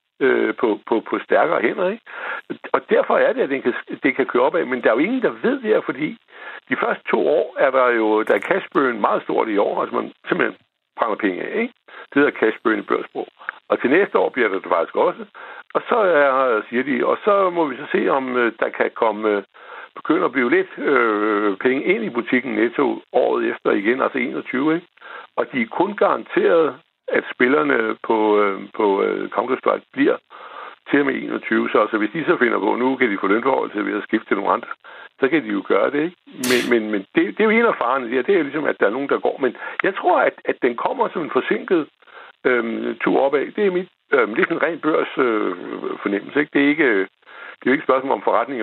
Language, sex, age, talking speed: Danish, male, 60-79, 230 wpm